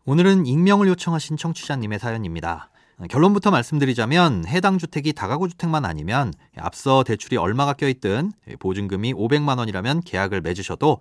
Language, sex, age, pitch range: Korean, male, 30-49, 105-165 Hz